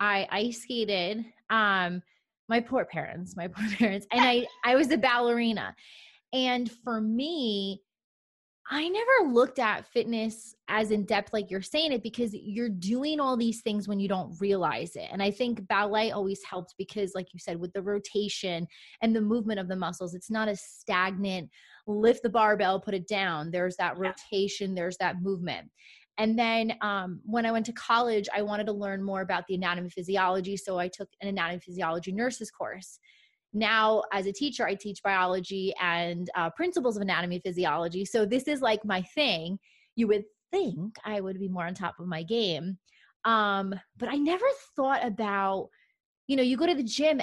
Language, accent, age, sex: English, American, 20-39, female